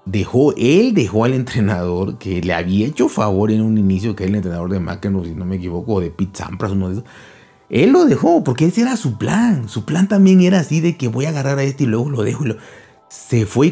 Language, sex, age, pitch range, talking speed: Spanish, male, 30-49, 105-155 Hz, 250 wpm